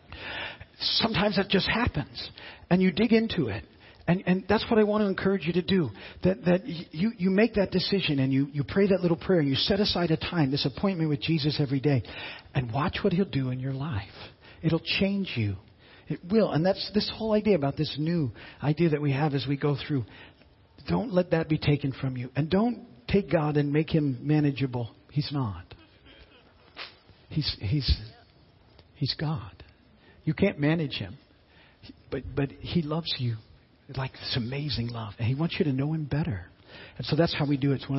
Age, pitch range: 50-69, 135-190 Hz